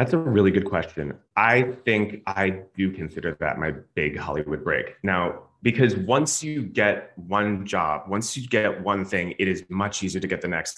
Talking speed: 195 wpm